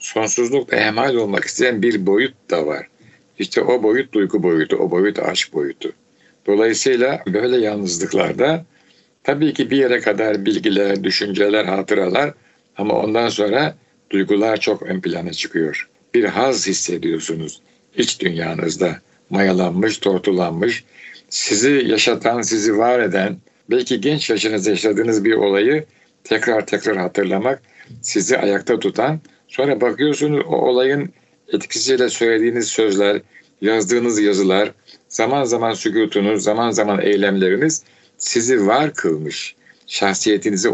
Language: Turkish